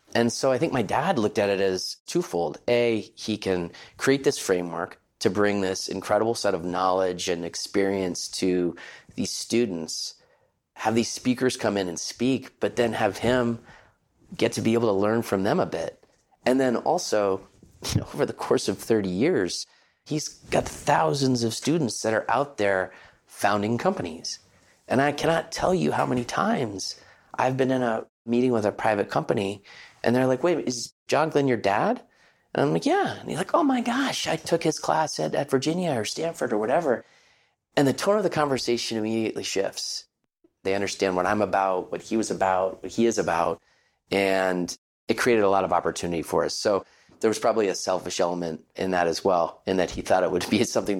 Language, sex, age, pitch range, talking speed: English, male, 30-49, 95-130 Hz, 195 wpm